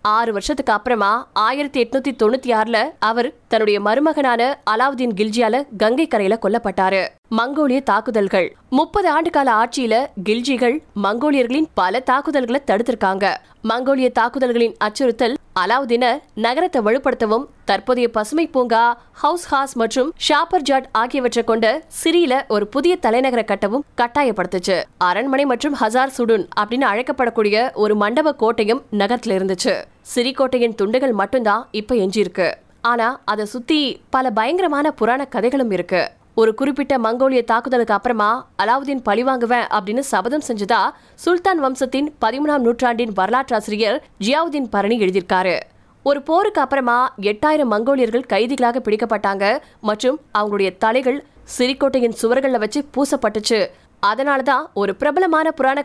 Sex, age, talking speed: female, 20-39, 105 wpm